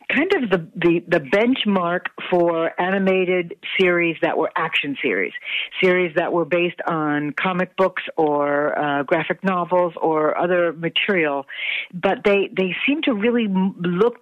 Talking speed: 145 wpm